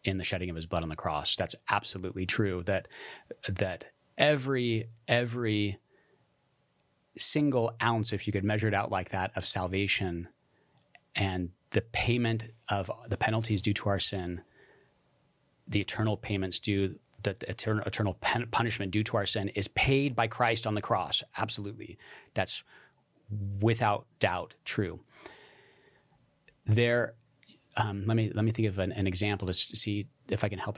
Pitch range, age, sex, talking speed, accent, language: 95-115 Hz, 30-49, male, 155 wpm, American, English